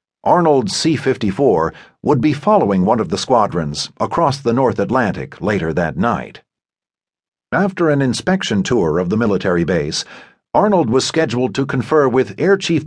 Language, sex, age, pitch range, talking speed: English, male, 50-69, 110-160 Hz, 150 wpm